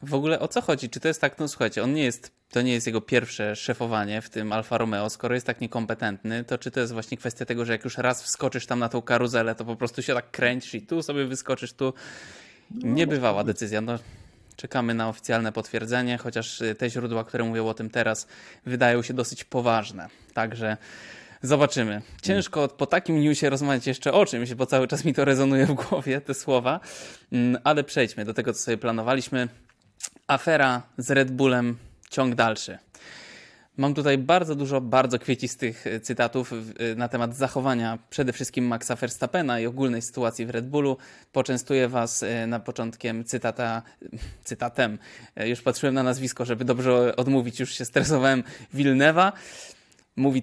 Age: 20-39